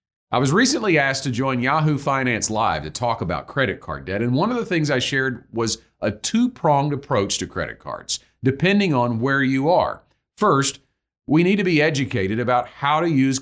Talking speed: 200 wpm